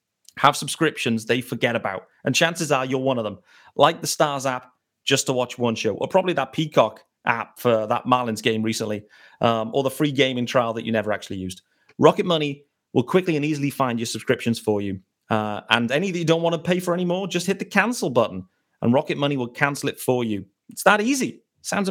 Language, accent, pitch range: English, British, 120-170 Hz